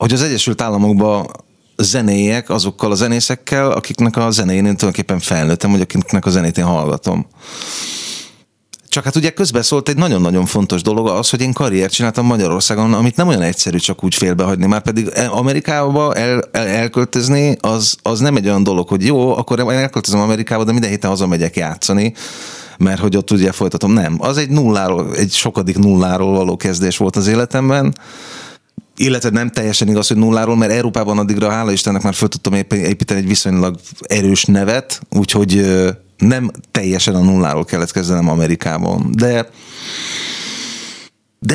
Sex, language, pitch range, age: male, Hungarian, 95-120 Hz, 30-49